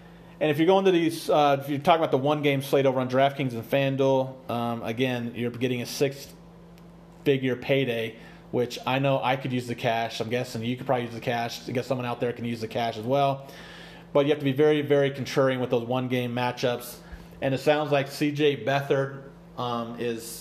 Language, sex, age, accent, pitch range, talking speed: English, male, 30-49, American, 115-140 Hz, 215 wpm